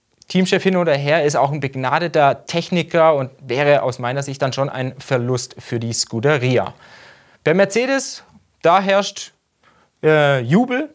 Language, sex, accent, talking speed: German, male, German, 150 wpm